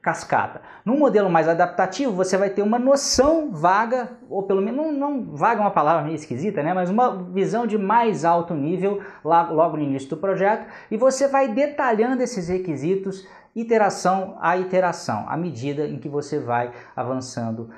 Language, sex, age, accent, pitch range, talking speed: Portuguese, male, 20-39, Brazilian, 165-230 Hz, 170 wpm